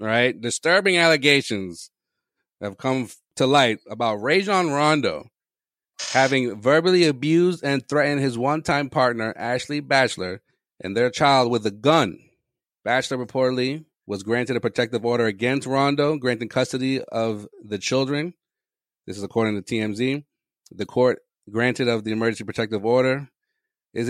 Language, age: English, 30-49